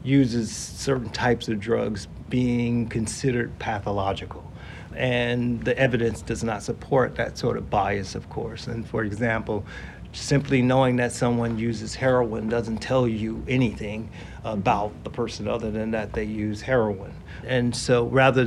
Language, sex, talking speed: English, male, 145 wpm